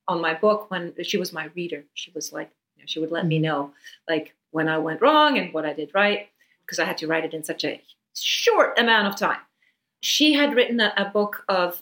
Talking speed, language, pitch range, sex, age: 245 wpm, English, 160-200 Hz, female, 40-59